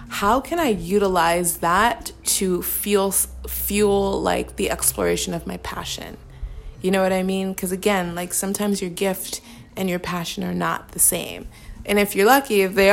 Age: 20-39